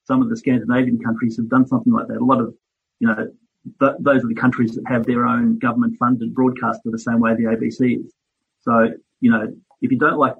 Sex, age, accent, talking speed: male, 40-59, Australian, 220 wpm